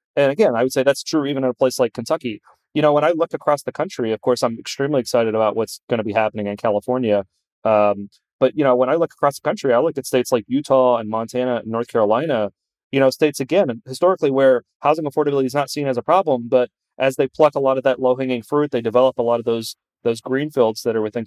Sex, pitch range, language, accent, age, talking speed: male, 115-135 Hz, English, American, 30-49, 250 wpm